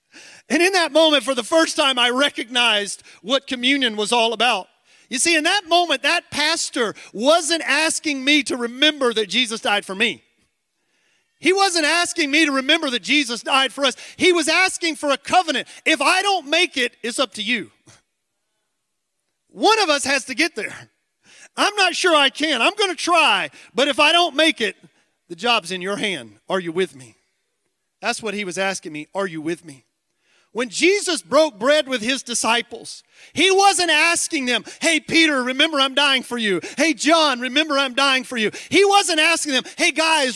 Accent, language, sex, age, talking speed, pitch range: American, English, male, 40-59, 195 wpm, 255-330 Hz